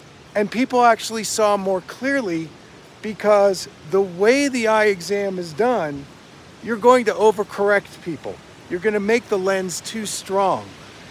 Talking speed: 145 wpm